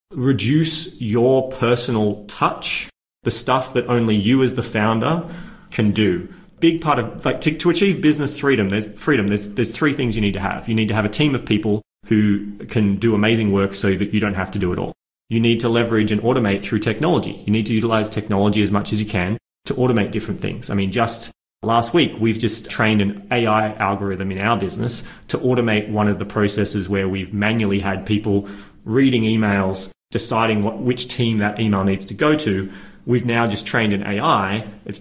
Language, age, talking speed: English, 30-49, 205 wpm